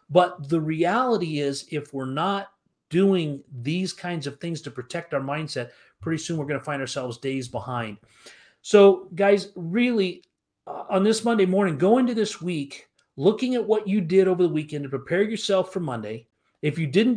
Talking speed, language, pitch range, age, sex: 180 wpm, English, 160-210 Hz, 40-59, male